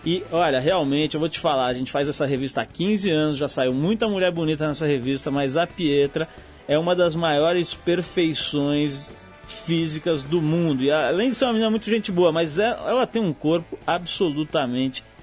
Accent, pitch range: Brazilian, 145-180 Hz